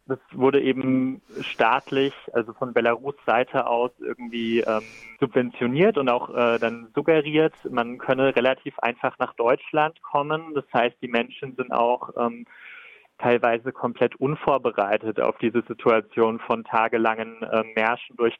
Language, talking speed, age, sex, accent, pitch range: German, 135 wpm, 30-49, male, German, 115-140 Hz